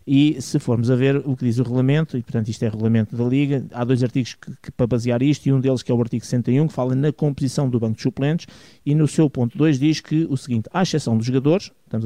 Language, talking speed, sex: Portuguese, 280 wpm, male